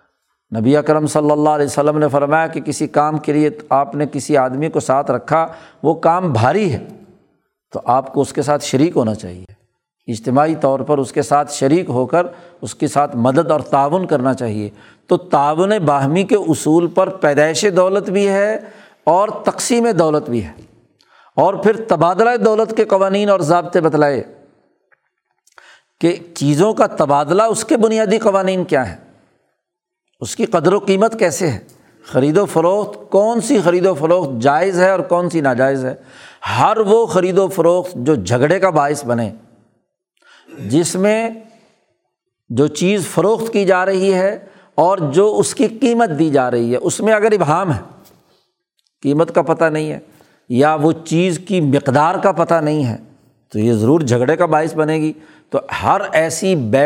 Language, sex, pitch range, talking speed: Urdu, male, 145-190 Hz, 175 wpm